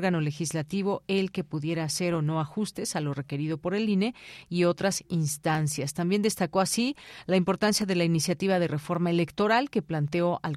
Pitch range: 160-200 Hz